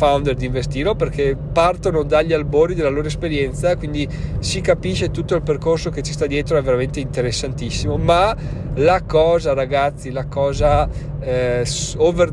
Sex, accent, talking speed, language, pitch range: male, native, 150 wpm, Italian, 135-160 Hz